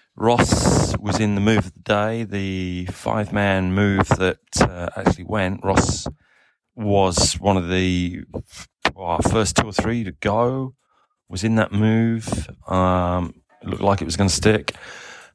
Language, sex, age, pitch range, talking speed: English, male, 30-49, 95-115 Hz, 155 wpm